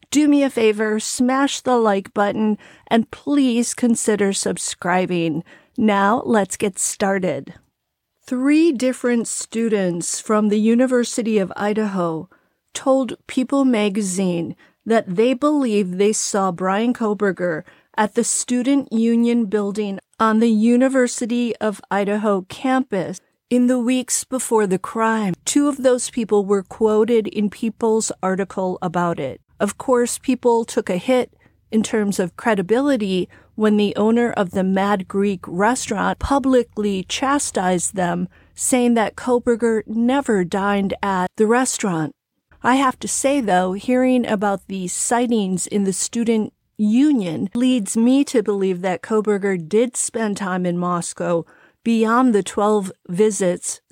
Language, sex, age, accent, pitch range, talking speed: English, female, 40-59, American, 195-240 Hz, 130 wpm